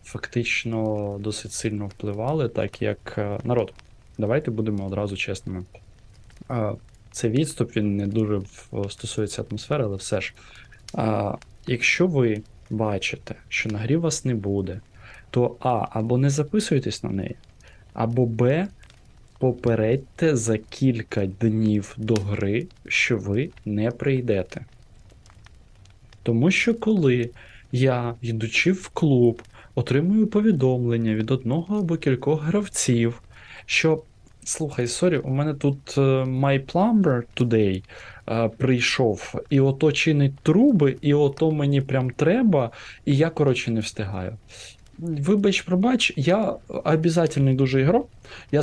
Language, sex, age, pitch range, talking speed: Ukrainian, male, 20-39, 110-150 Hz, 120 wpm